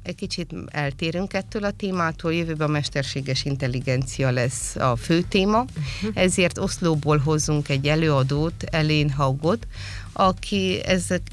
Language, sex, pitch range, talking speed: Hungarian, female, 135-170 Hz, 120 wpm